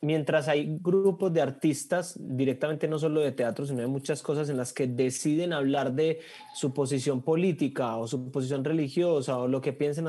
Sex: male